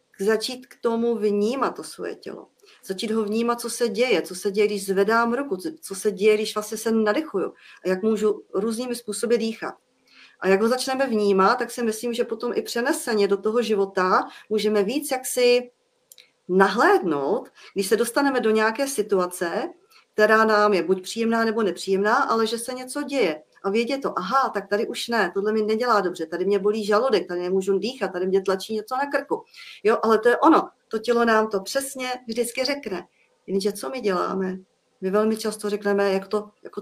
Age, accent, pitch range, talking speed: 40-59, native, 195-240 Hz, 190 wpm